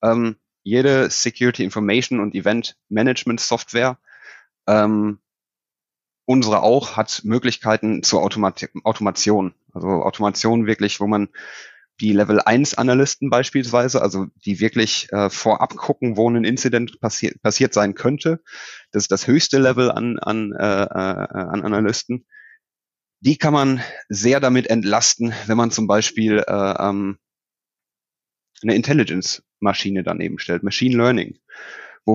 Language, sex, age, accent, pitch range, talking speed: German, male, 30-49, German, 105-120 Hz, 125 wpm